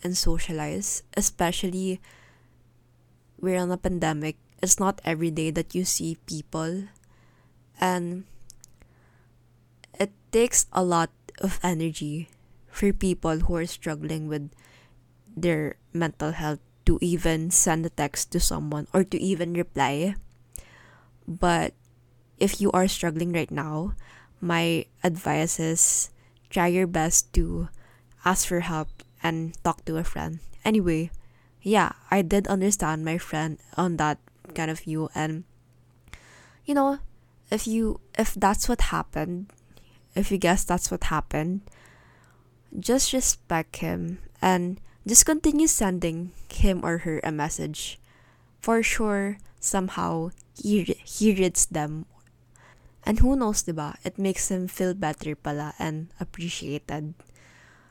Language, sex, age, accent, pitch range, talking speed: Filipino, female, 20-39, native, 145-185 Hz, 125 wpm